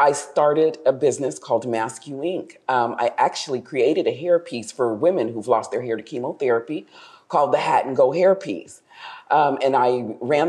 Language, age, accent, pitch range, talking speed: English, 40-59, American, 150-215 Hz, 190 wpm